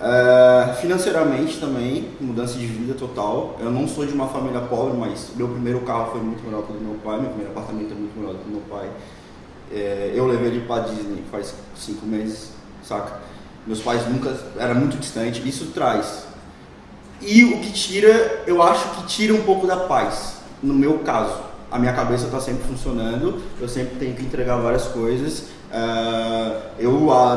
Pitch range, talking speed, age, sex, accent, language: 115-145 Hz, 185 wpm, 20-39, male, Brazilian, Portuguese